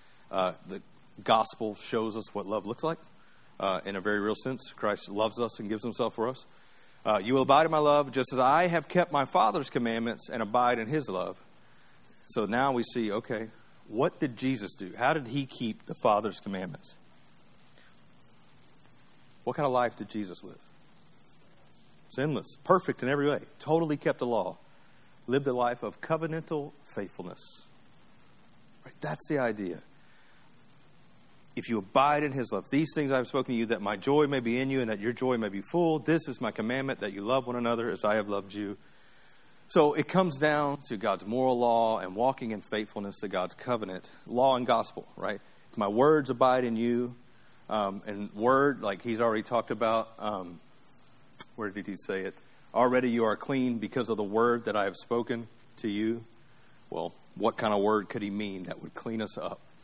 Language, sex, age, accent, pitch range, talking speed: English, male, 40-59, American, 110-135 Hz, 190 wpm